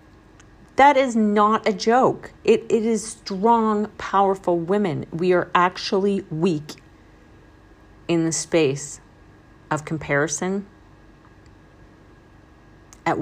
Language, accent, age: English, American, 40-59